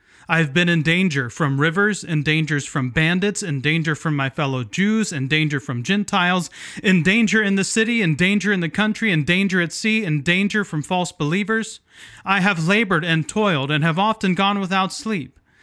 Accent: American